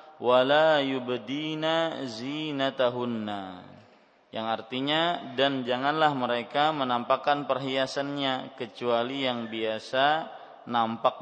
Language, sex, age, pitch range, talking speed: Malay, male, 20-39, 125-150 Hz, 80 wpm